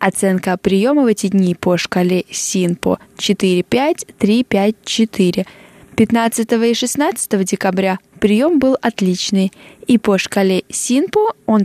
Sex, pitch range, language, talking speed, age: female, 190-230 Hz, Russian, 130 wpm, 10-29